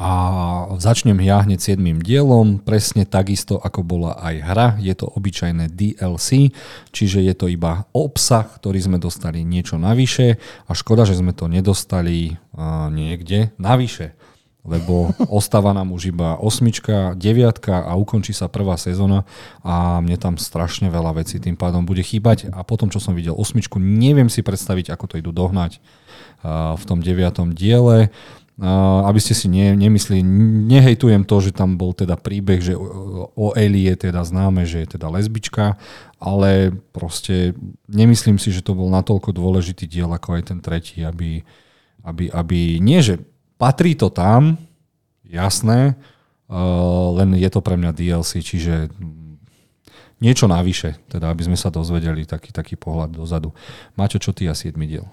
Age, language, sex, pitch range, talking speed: 40-59, Slovak, male, 85-110 Hz, 160 wpm